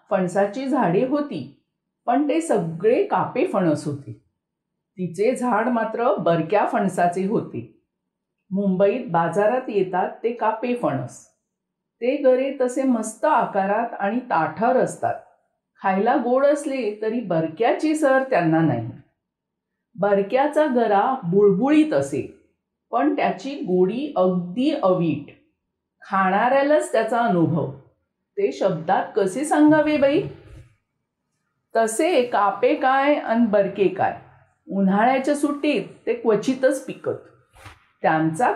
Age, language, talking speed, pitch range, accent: 50-69, Marathi, 100 wpm, 185-270 Hz, native